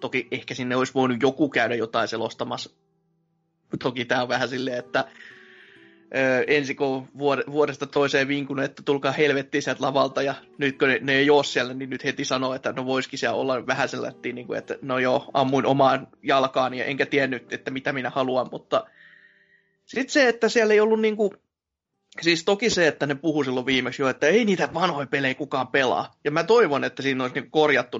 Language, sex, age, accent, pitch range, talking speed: Finnish, male, 20-39, native, 130-155 Hz, 190 wpm